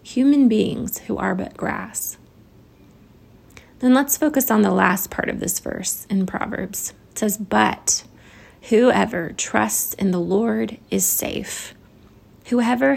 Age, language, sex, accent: 20-39, English, female, American